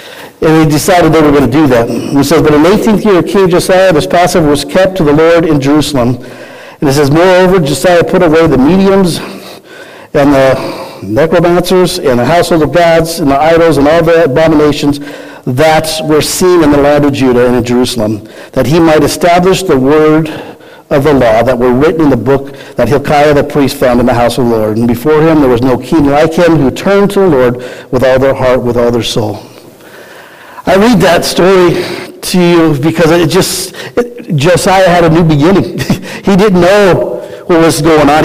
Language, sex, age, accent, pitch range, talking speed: English, male, 50-69, American, 140-175 Hz, 210 wpm